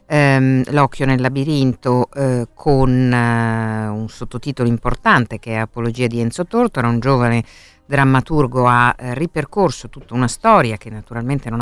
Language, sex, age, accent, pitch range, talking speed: Italian, female, 50-69, native, 115-145 Hz, 140 wpm